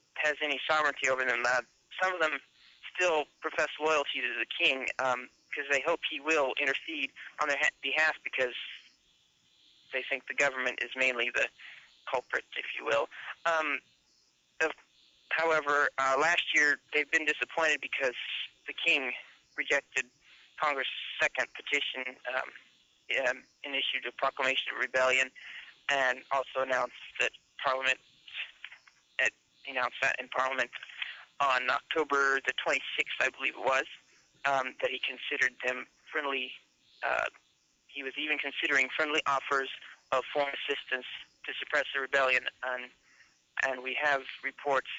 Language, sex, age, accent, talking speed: English, male, 30-49, American, 135 wpm